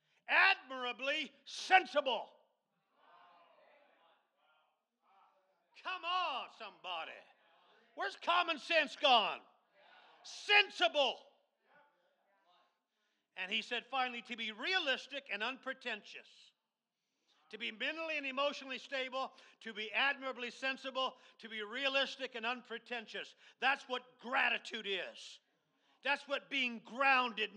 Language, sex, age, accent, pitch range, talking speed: English, male, 50-69, American, 210-275 Hz, 90 wpm